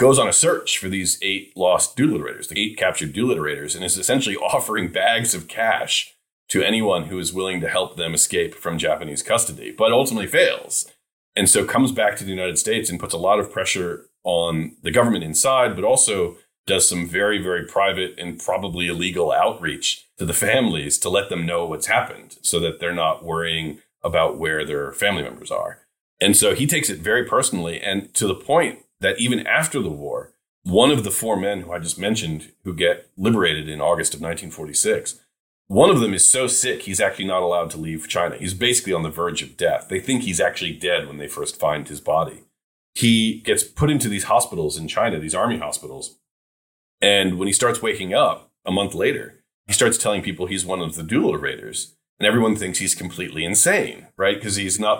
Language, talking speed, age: English, 205 wpm, 30-49